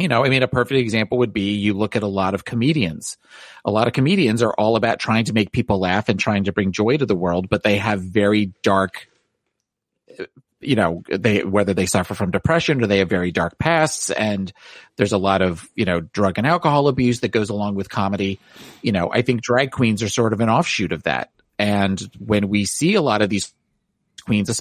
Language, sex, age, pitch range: English, male, 40-59, 100-120 Hz